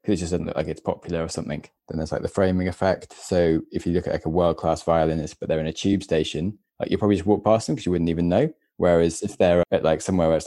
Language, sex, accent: English, male, British